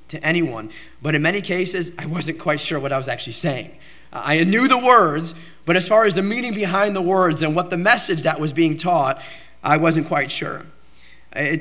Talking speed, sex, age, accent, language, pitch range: 210 wpm, male, 30-49, American, English, 140-170 Hz